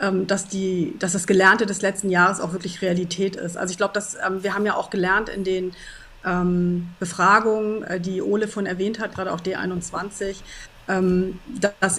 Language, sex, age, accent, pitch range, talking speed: English, female, 30-49, German, 180-205 Hz, 165 wpm